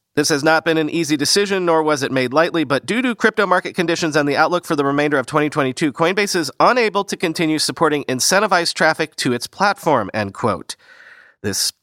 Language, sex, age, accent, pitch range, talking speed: English, male, 40-59, American, 130-165 Hz, 205 wpm